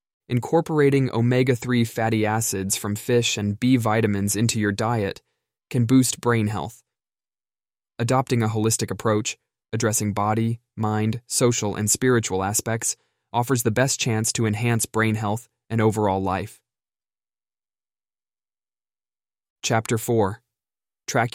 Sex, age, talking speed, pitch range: male, 20-39, 115 wpm, 105-120 Hz